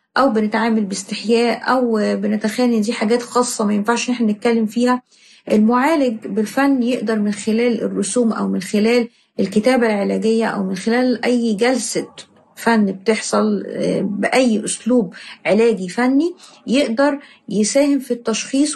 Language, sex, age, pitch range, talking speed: Arabic, female, 30-49, 210-240 Hz, 125 wpm